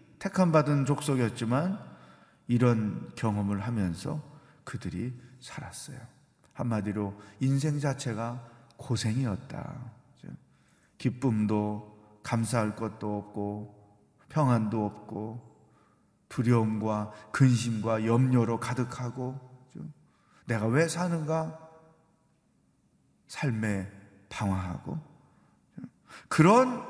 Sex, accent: male, native